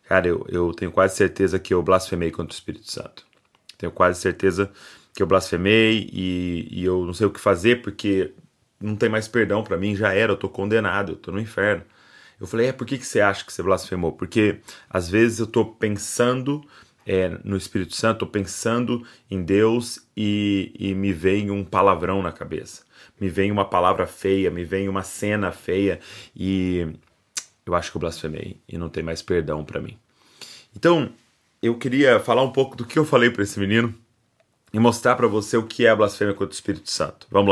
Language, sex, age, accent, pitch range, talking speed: Portuguese, male, 30-49, Brazilian, 95-115 Hz, 200 wpm